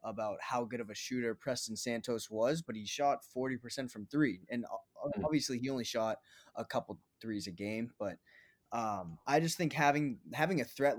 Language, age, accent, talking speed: English, 20-39, American, 185 wpm